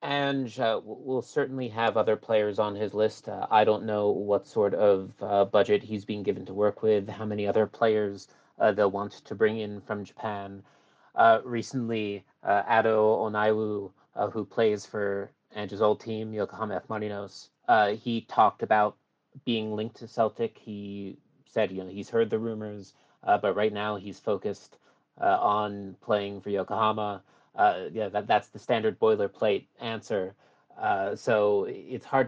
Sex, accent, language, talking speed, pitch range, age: male, American, English, 165 wpm, 100-115 Hz, 30-49